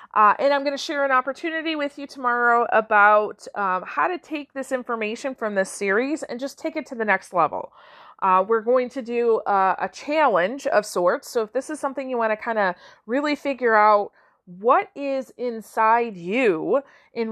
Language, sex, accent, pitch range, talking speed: English, female, American, 205-275 Hz, 200 wpm